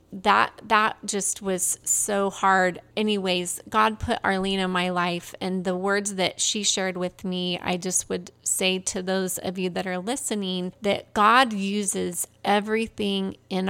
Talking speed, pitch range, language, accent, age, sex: 160 wpm, 185-205 Hz, English, American, 30-49, female